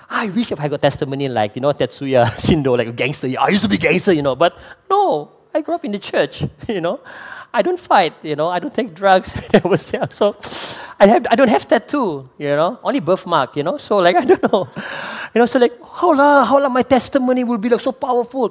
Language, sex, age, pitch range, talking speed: English, male, 20-39, 160-250 Hz, 250 wpm